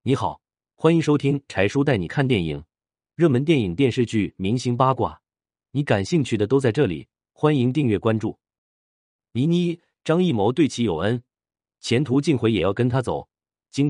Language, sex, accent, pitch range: Chinese, male, native, 95-135 Hz